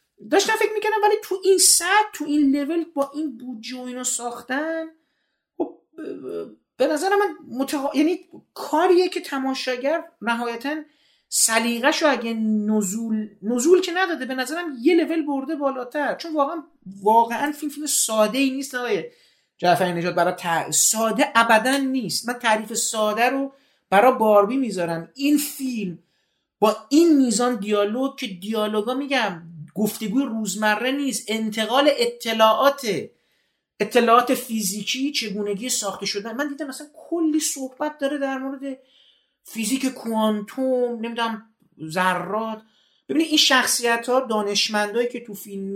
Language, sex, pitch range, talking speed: Persian, male, 205-280 Hz, 125 wpm